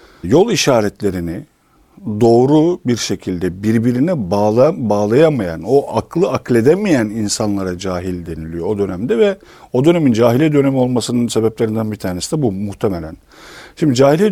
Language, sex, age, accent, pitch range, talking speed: Turkish, male, 50-69, native, 100-135 Hz, 125 wpm